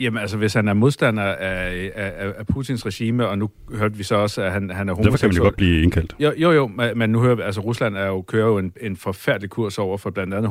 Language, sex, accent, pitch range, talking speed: Danish, male, native, 100-115 Hz, 280 wpm